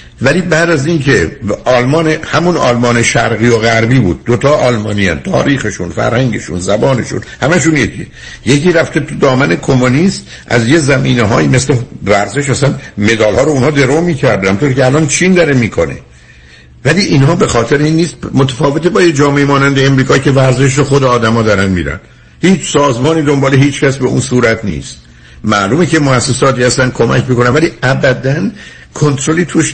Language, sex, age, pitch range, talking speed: Persian, male, 60-79, 115-155 Hz, 160 wpm